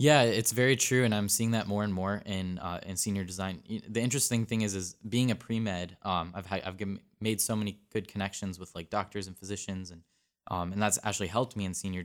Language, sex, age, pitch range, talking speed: English, male, 10-29, 90-105 Hz, 235 wpm